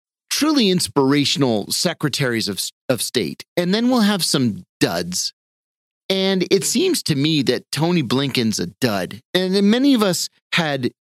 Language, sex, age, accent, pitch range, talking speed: English, male, 30-49, American, 140-180 Hz, 145 wpm